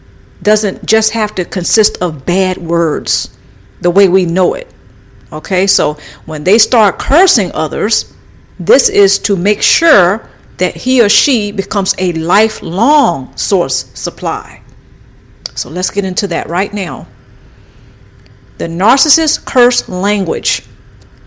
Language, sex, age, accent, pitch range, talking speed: English, female, 50-69, American, 175-240 Hz, 125 wpm